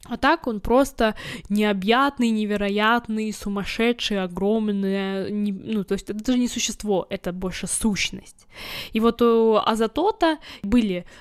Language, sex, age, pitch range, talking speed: Ukrainian, female, 10-29, 195-240 Hz, 125 wpm